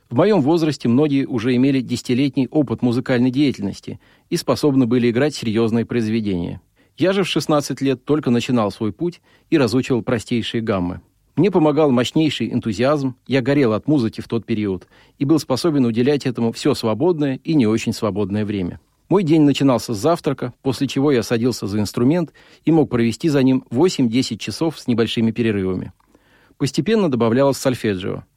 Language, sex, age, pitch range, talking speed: Russian, male, 40-59, 115-145 Hz, 160 wpm